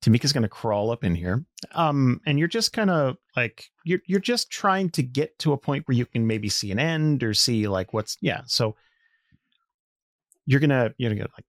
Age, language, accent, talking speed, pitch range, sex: 30-49, English, American, 220 wpm, 110-155 Hz, male